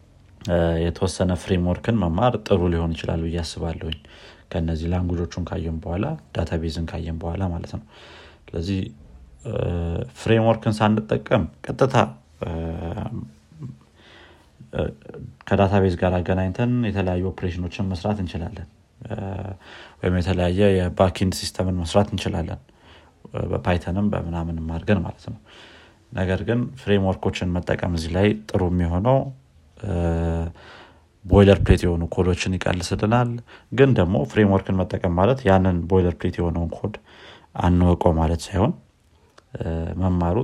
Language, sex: Amharic, male